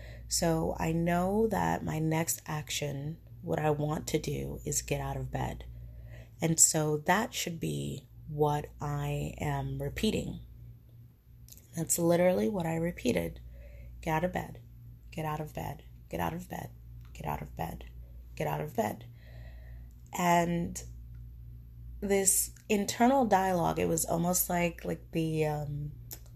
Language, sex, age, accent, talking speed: English, female, 30-49, American, 145 wpm